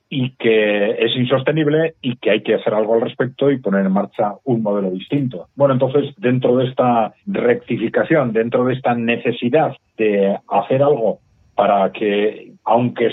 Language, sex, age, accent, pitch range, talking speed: Spanish, male, 40-59, Spanish, 105-130 Hz, 160 wpm